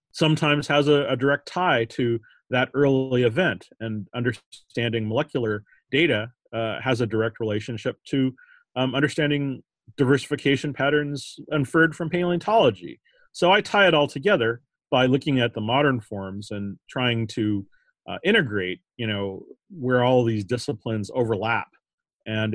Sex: male